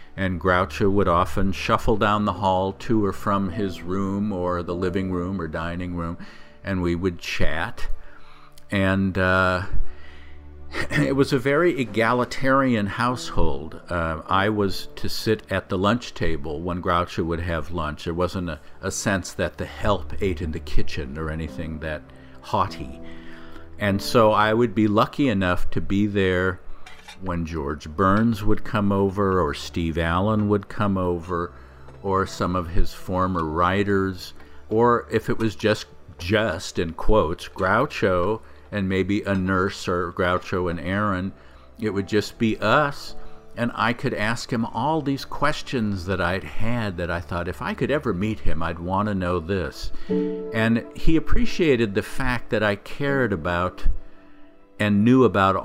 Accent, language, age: American, English, 50-69